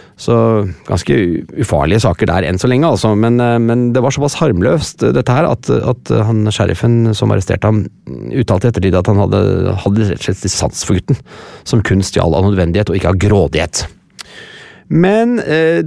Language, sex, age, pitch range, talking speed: English, male, 30-49, 95-125 Hz, 165 wpm